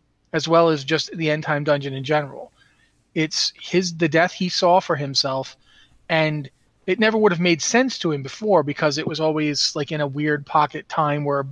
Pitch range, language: 145-180 Hz, English